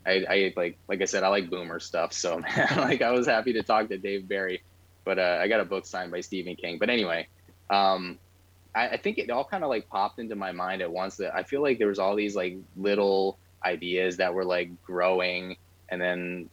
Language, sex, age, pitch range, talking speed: English, male, 20-39, 90-95 Hz, 230 wpm